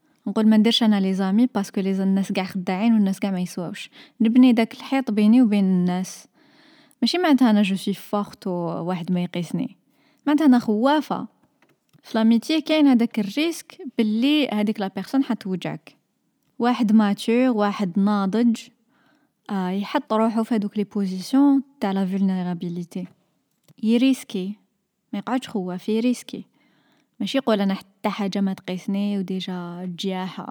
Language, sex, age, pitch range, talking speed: Arabic, female, 20-39, 185-230 Hz, 140 wpm